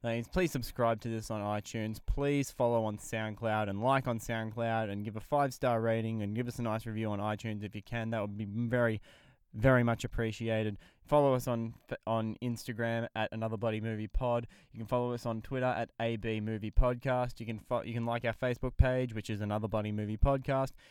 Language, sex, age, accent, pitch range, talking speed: English, male, 20-39, Australian, 115-130 Hz, 205 wpm